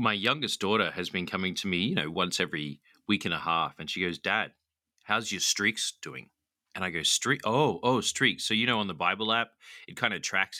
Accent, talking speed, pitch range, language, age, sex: Australian, 230 wpm, 90-115 Hz, English, 30-49, male